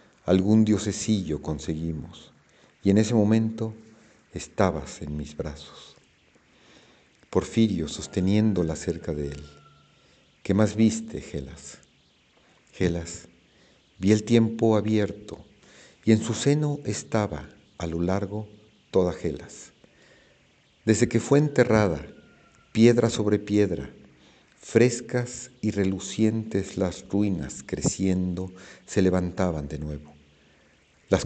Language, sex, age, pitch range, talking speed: Spanish, male, 50-69, 85-110 Hz, 100 wpm